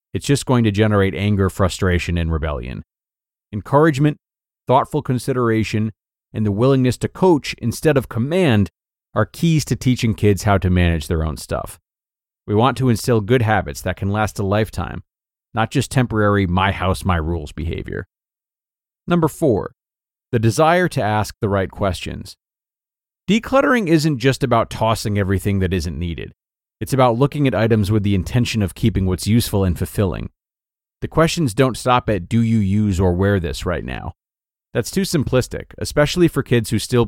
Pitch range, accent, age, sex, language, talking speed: 95-125 Hz, American, 30-49, male, English, 160 wpm